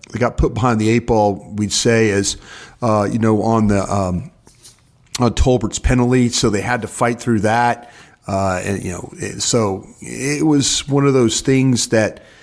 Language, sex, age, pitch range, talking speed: English, male, 40-59, 105-125 Hz, 180 wpm